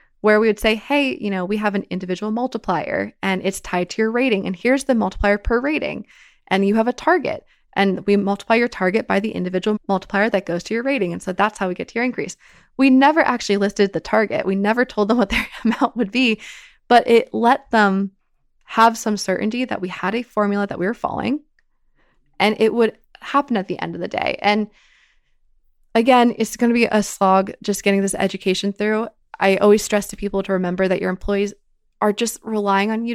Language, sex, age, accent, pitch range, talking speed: English, female, 20-39, American, 190-225 Hz, 220 wpm